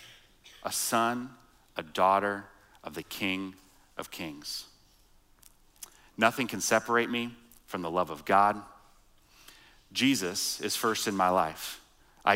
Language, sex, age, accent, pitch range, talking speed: English, male, 30-49, American, 95-120 Hz, 120 wpm